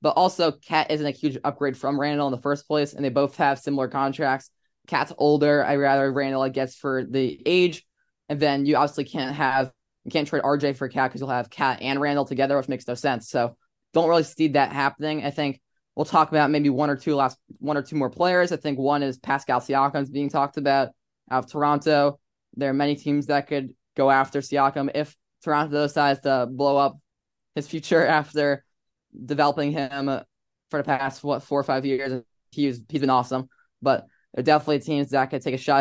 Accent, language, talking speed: American, English, 210 wpm